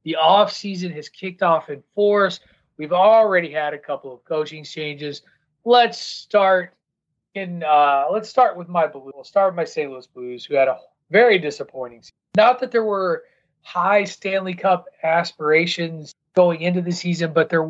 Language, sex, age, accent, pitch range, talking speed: English, male, 30-49, American, 145-190 Hz, 150 wpm